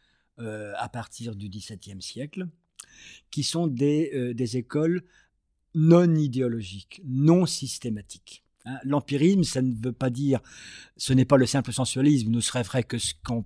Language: French